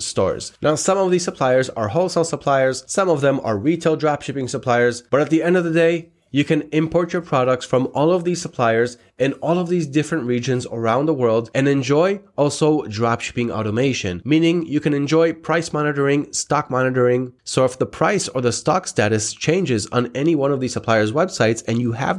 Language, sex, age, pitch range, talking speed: English, male, 20-39, 120-155 Hz, 200 wpm